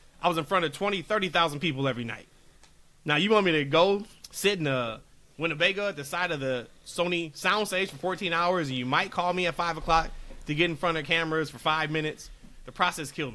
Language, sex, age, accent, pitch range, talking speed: English, male, 30-49, American, 145-185 Hz, 230 wpm